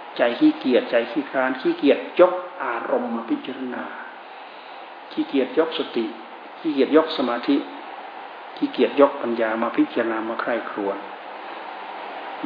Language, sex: Thai, male